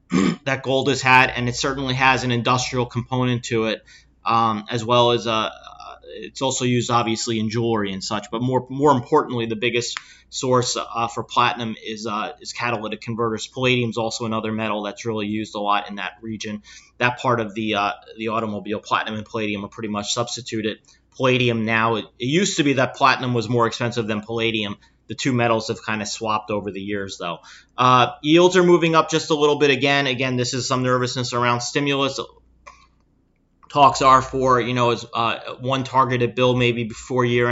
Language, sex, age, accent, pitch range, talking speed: English, male, 30-49, American, 115-130 Hz, 200 wpm